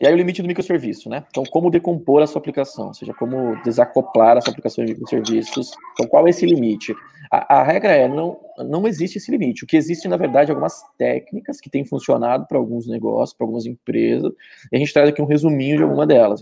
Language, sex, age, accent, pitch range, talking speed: Portuguese, male, 20-39, Brazilian, 110-155 Hz, 225 wpm